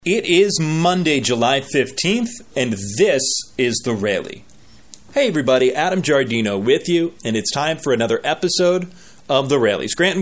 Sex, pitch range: male, 120-165 Hz